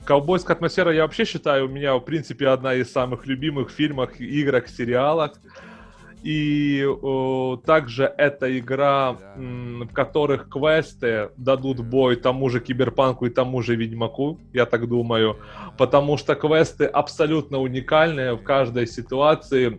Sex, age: male, 20-39